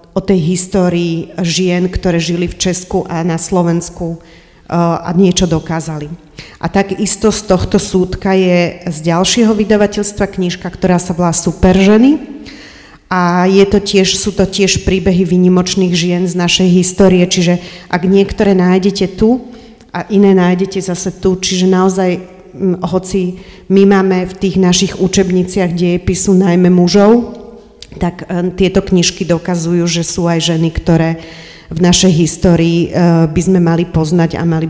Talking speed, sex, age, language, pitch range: 140 wpm, female, 40-59, Slovak, 175-195 Hz